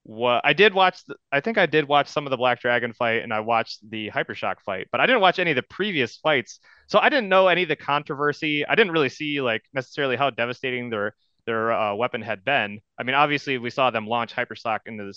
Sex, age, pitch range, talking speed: male, 30-49, 110-145 Hz, 250 wpm